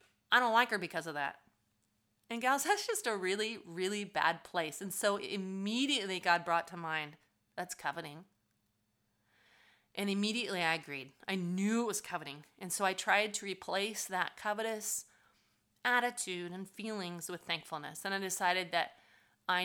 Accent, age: American, 30-49